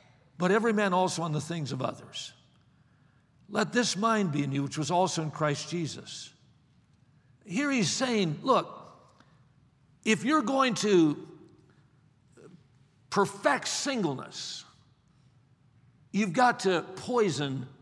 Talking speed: 120 wpm